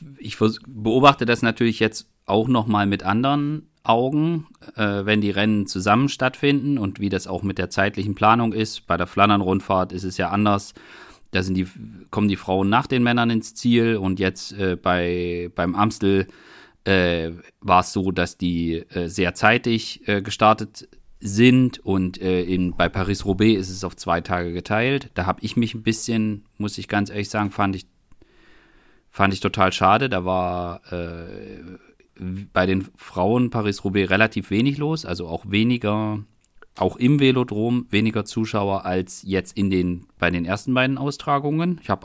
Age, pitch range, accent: 40-59, 95-115 Hz, German